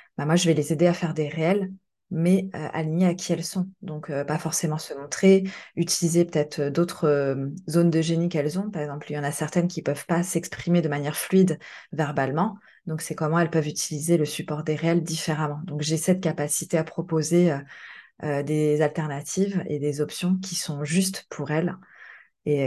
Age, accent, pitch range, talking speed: 20-39, French, 150-175 Hz, 205 wpm